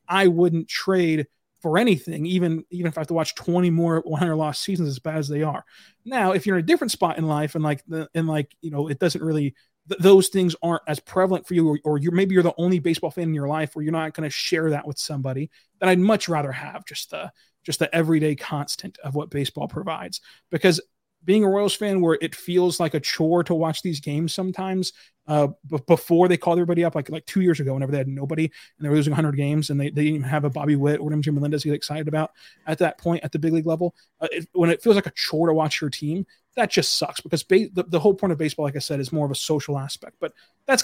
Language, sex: English, male